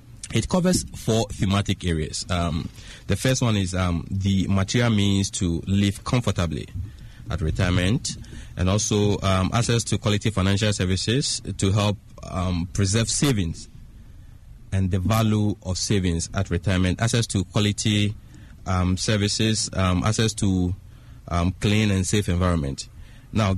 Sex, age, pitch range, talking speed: male, 30-49, 90-110 Hz, 135 wpm